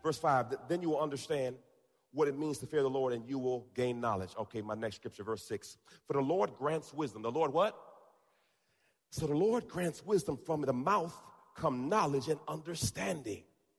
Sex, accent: male, American